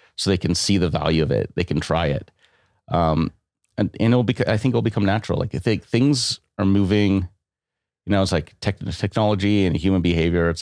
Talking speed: 215 wpm